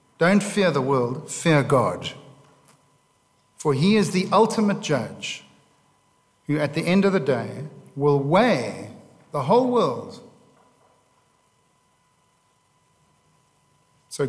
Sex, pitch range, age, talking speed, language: male, 130-165 Hz, 50-69, 105 wpm, English